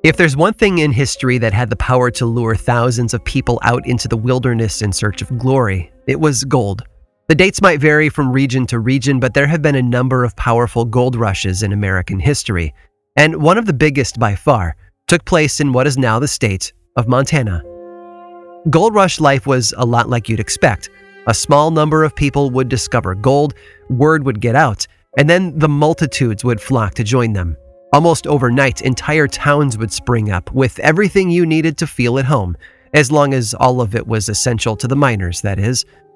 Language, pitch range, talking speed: English, 115-150 Hz, 200 wpm